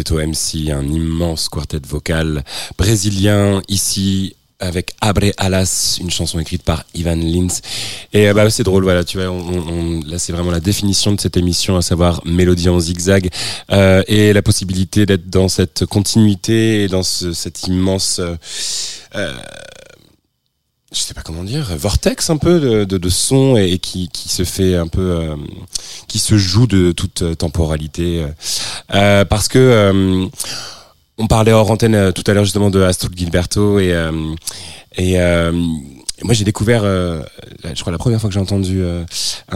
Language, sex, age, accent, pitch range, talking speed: French, male, 20-39, French, 85-100 Hz, 175 wpm